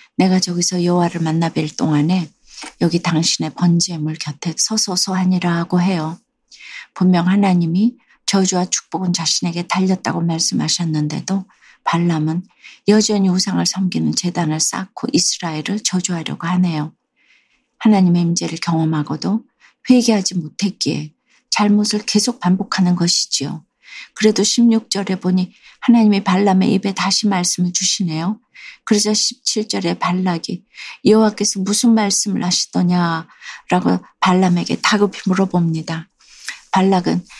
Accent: native